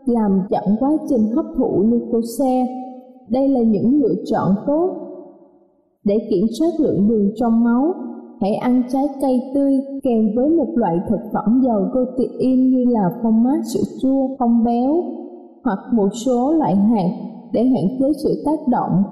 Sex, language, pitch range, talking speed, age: female, Vietnamese, 220-280 Hz, 165 wpm, 20-39